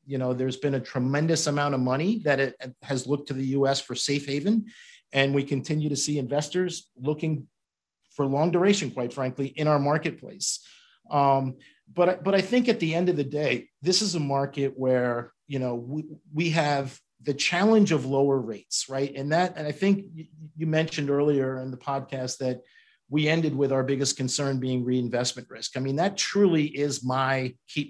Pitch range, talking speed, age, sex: 135-160 Hz, 190 wpm, 50-69, male